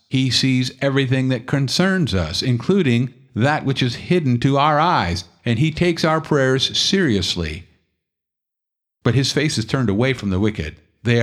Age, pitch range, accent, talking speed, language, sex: 50-69, 105-135 Hz, American, 160 wpm, English, male